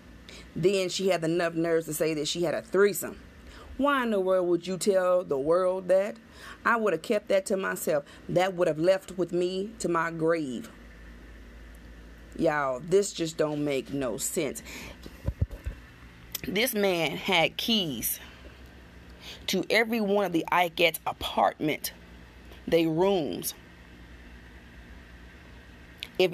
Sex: female